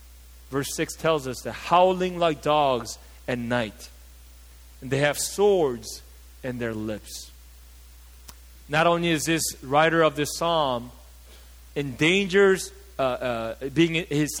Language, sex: English, male